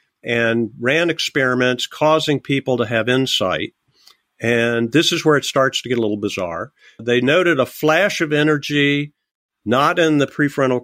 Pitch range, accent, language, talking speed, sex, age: 115-150 Hz, American, English, 160 wpm, male, 50-69